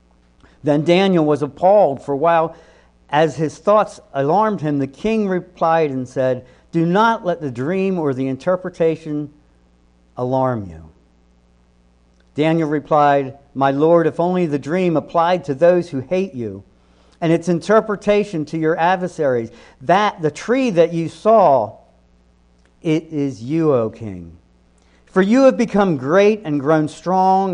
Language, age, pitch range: English, 50-69, 115-175 Hz